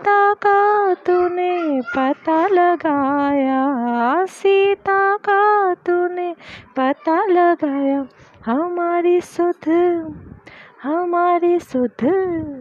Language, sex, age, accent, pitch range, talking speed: Hindi, female, 30-49, native, 255-345 Hz, 60 wpm